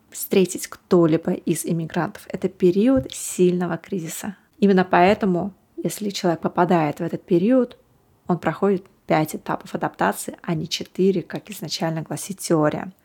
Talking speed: 130 wpm